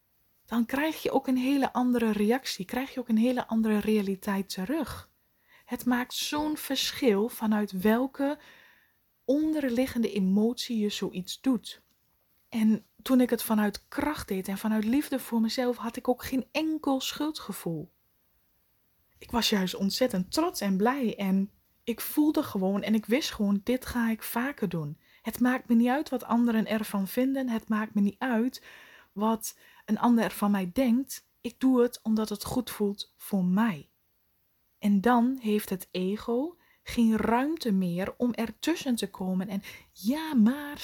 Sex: female